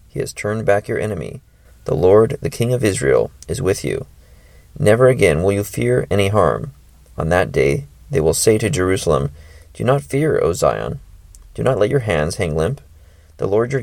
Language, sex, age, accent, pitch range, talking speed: English, male, 30-49, American, 80-115 Hz, 195 wpm